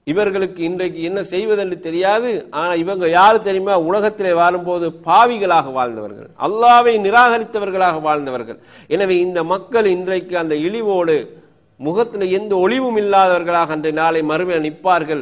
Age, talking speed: 50-69, 95 wpm